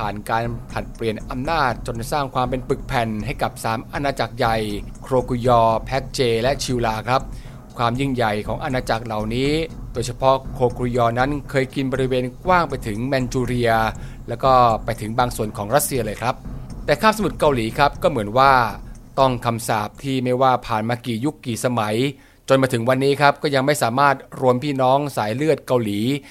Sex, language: male, Thai